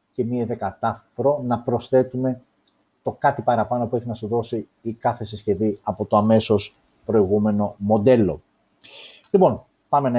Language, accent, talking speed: Greek, native, 145 wpm